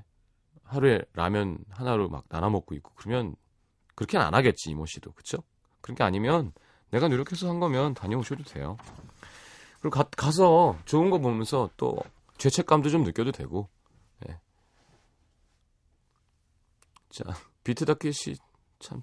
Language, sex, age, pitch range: Korean, male, 30-49, 95-150 Hz